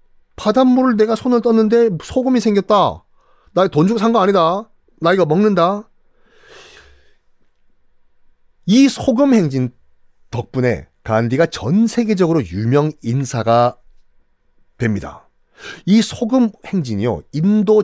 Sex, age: male, 30-49